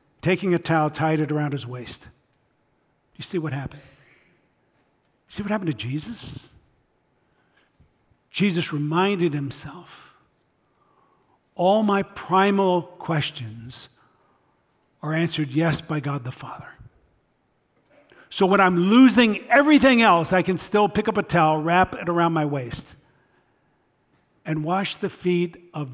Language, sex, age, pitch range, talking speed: English, male, 50-69, 150-190 Hz, 125 wpm